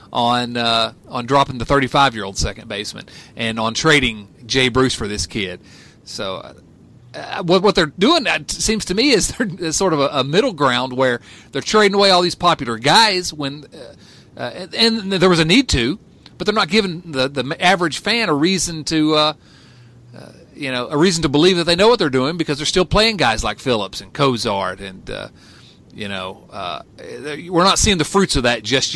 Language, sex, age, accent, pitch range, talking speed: English, male, 40-59, American, 120-185 Hz, 210 wpm